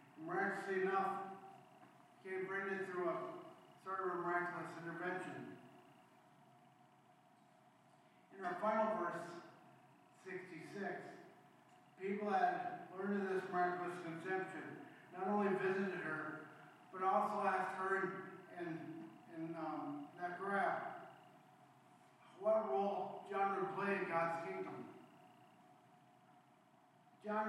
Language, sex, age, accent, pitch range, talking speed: English, male, 50-69, American, 160-190 Hz, 105 wpm